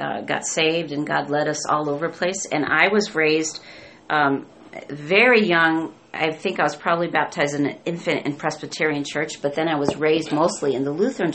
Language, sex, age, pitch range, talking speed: English, female, 40-59, 150-175 Hz, 205 wpm